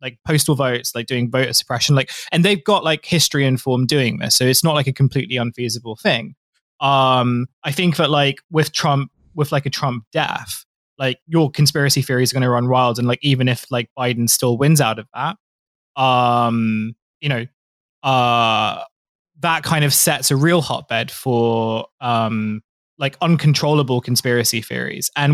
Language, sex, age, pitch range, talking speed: English, male, 20-39, 125-150 Hz, 175 wpm